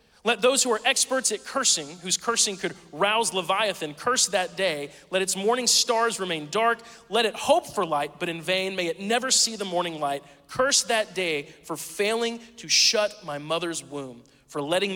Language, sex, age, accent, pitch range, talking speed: English, male, 30-49, American, 165-225 Hz, 195 wpm